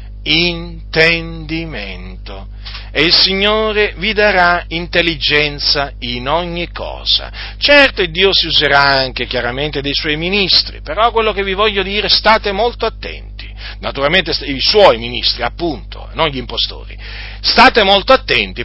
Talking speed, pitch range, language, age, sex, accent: 125 wpm, 115-180 Hz, Italian, 40-59, male, native